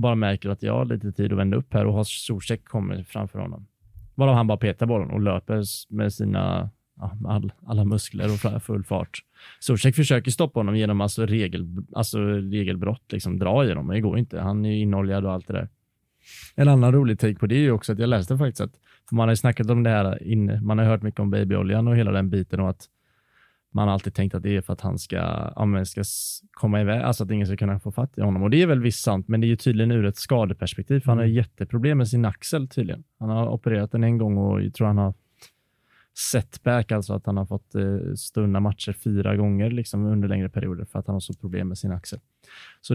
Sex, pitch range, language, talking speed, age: male, 100-120 Hz, Swedish, 235 wpm, 20-39